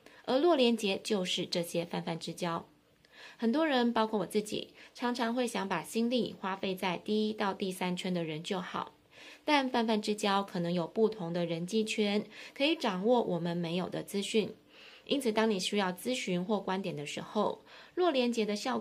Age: 20-39